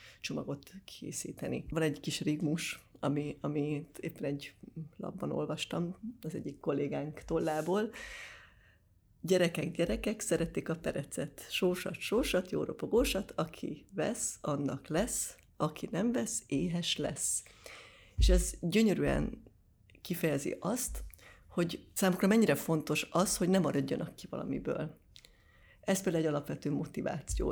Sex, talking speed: female, 120 wpm